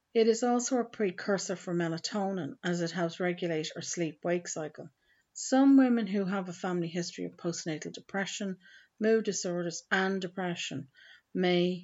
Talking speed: 145 wpm